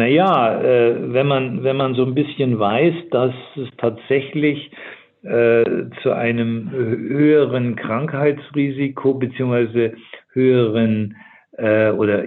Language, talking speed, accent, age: German, 95 wpm, German, 50-69